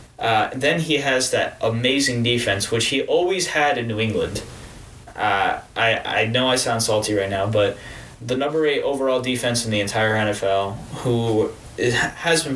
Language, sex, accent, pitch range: English, male, American, 105-130 Hz